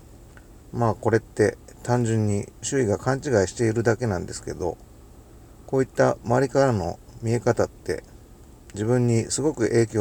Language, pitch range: Japanese, 105-125 Hz